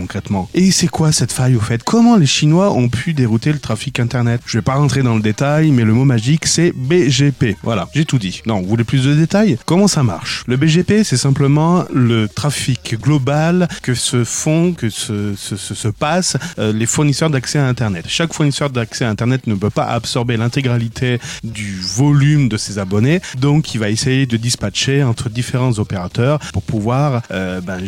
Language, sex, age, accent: French, male, 30-49, French